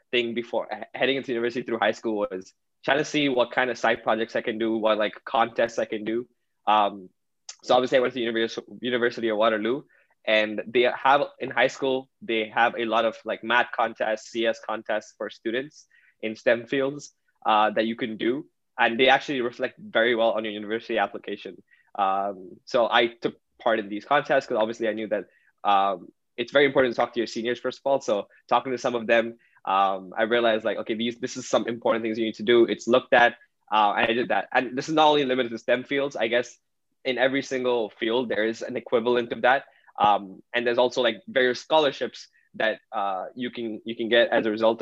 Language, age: English, 20-39